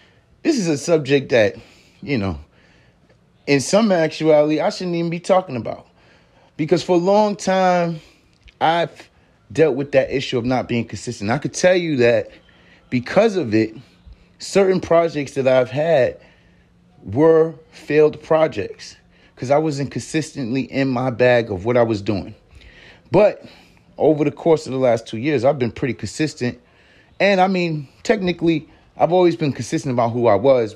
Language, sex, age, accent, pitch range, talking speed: English, male, 30-49, American, 125-170 Hz, 160 wpm